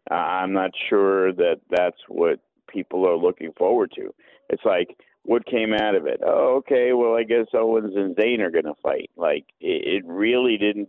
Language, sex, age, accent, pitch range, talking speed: English, male, 50-69, American, 95-125 Hz, 205 wpm